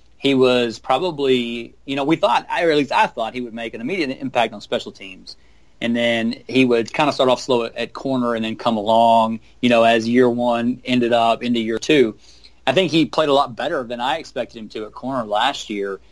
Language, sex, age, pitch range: English, male, 30-49, 110-130 Hz